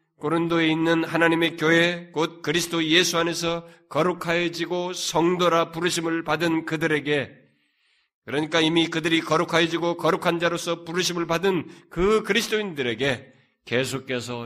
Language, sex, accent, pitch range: Korean, male, native, 150-195 Hz